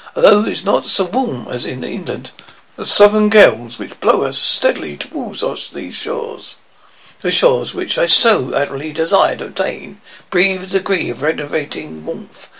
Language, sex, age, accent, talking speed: English, male, 60-79, British, 160 wpm